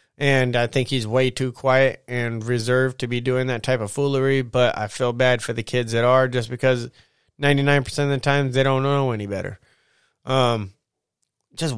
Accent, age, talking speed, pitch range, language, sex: American, 20-39, 195 wpm, 125-140 Hz, English, male